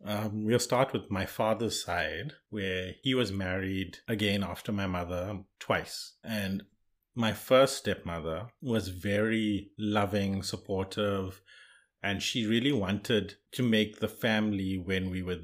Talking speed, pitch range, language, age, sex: 135 wpm, 95-110 Hz, English, 30-49, male